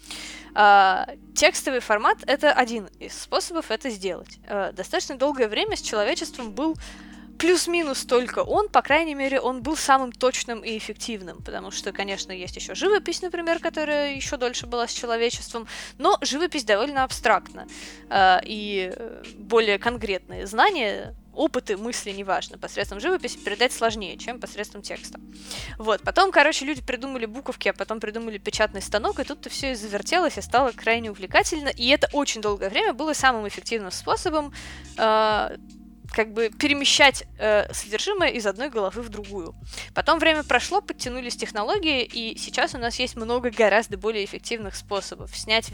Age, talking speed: 20-39, 150 wpm